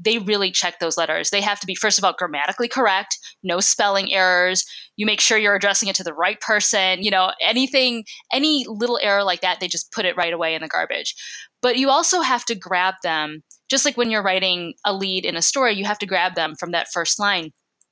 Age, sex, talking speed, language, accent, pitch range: 10-29, female, 235 wpm, English, American, 175-215 Hz